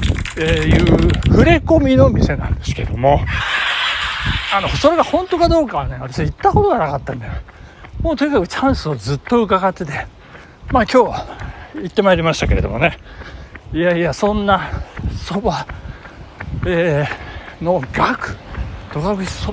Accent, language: native, Japanese